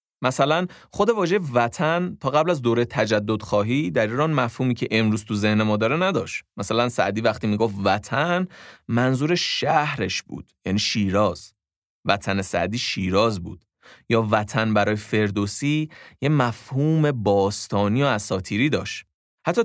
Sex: male